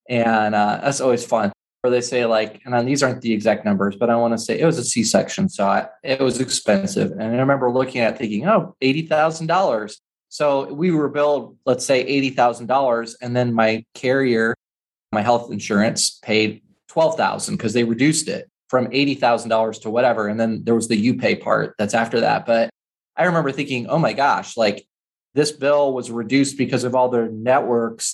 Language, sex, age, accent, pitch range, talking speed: English, male, 20-39, American, 115-135 Hz, 205 wpm